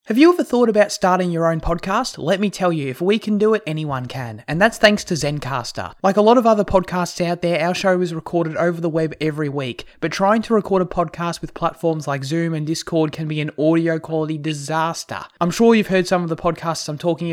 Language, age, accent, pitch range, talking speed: English, 20-39, Australian, 150-185 Hz, 240 wpm